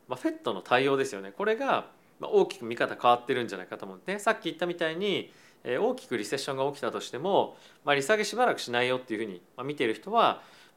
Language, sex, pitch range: Japanese, male, 120-180 Hz